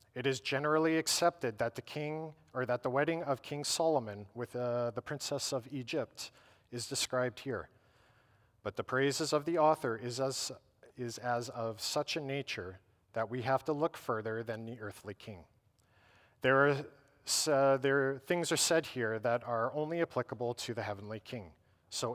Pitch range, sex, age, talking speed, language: 110-145 Hz, male, 40-59, 175 wpm, English